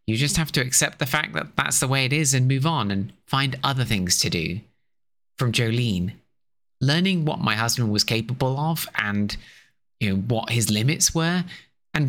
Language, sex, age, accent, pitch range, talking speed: English, male, 20-39, British, 110-145 Hz, 195 wpm